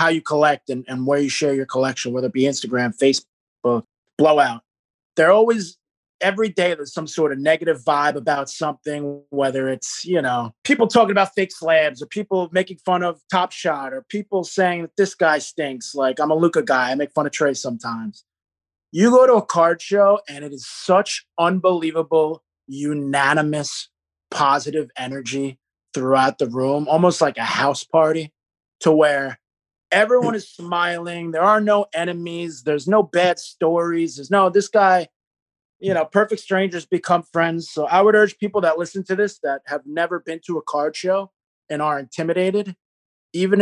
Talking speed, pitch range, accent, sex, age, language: 175 wpm, 140-180 Hz, American, male, 30-49, English